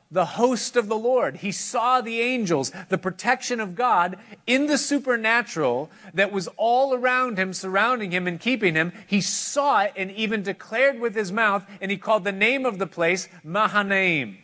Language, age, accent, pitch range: English, 40-59, American, 175-225 Hz